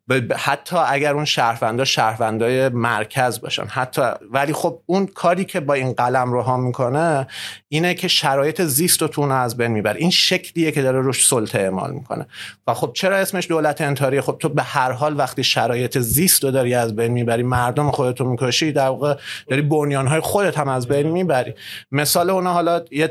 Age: 30-49